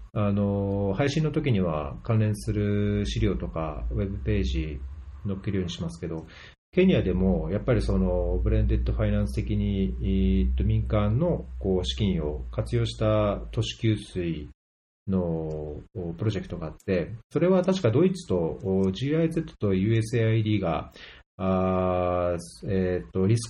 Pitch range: 90-135 Hz